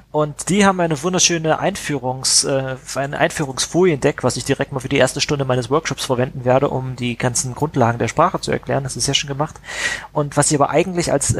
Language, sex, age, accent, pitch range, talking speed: German, male, 30-49, German, 125-150 Hz, 205 wpm